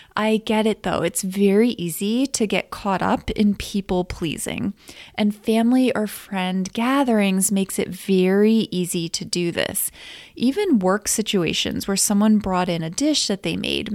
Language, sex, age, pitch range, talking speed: English, female, 20-39, 190-230 Hz, 160 wpm